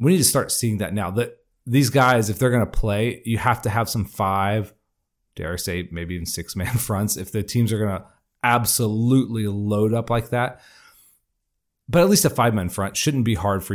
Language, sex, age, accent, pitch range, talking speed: English, male, 30-49, American, 100-120 Hz, 225 wpm